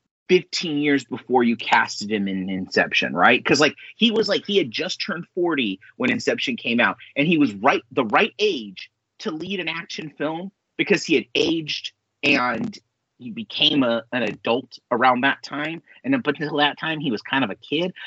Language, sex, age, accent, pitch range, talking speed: English, male, 30-49, American, 125-200 Hz, 200 wpm